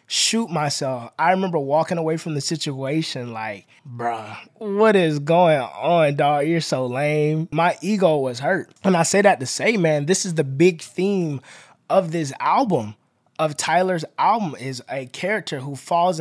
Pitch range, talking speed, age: 135-175 Hz, 170 wpm, 20-39